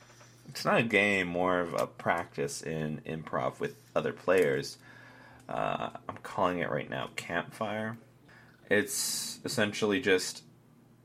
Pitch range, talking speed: 85-120 Hz, 125 wpm